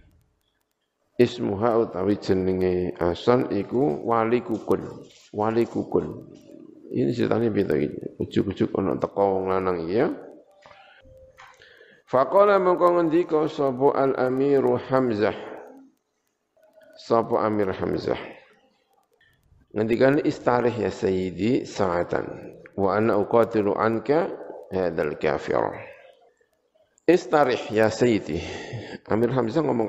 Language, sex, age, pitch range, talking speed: Indonesian, male, 50-69, 105-145 Hz, 90 wpm